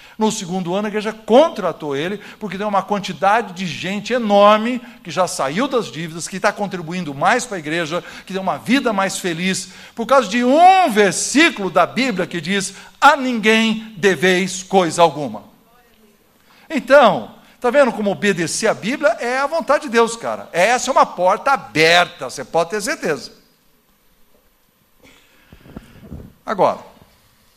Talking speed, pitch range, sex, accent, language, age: 150 wpm, 160-220 Hz, male, Brazilian, Portuguese, 60-79